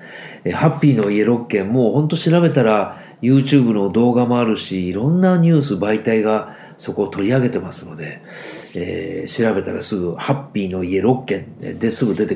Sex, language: male, Japanese